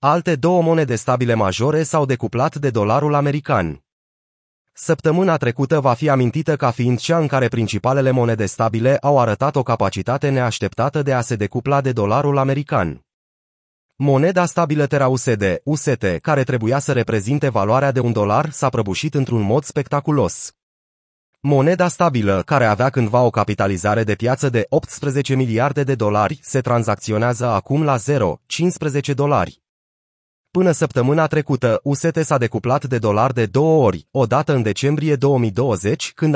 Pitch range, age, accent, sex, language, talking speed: 115-150 Hz, 30-49, native, male, Romanian, 145 wpm